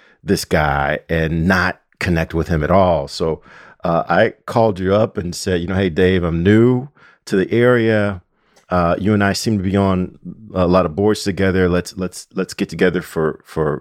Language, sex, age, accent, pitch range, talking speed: English, male, 40-59, American, 85-110 Hz, 200 wpm